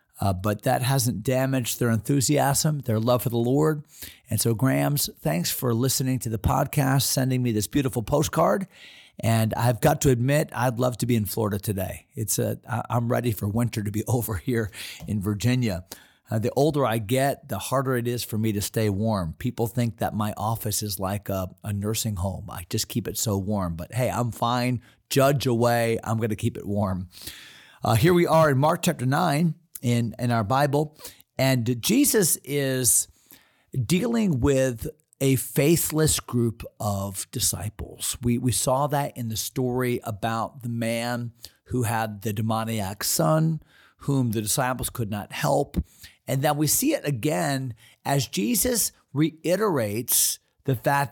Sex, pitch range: male, 110-140 Hz